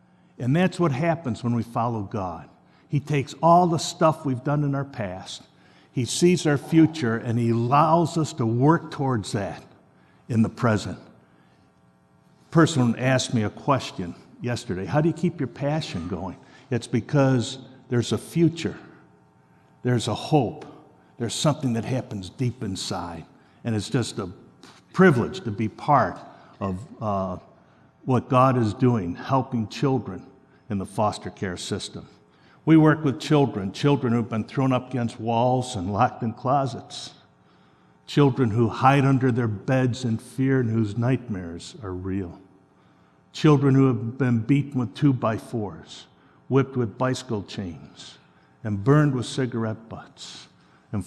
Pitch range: 105-135 Hz